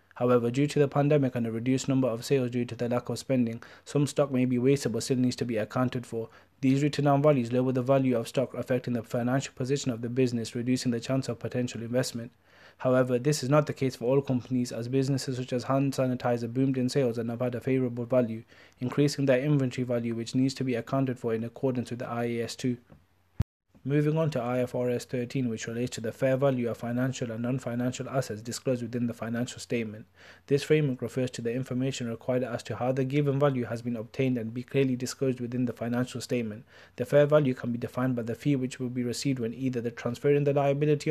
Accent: South African